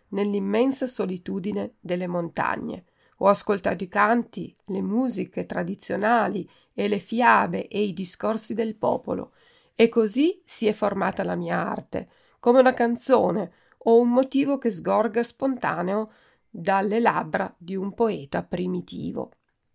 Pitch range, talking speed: 195-255 Hz, 130 wpm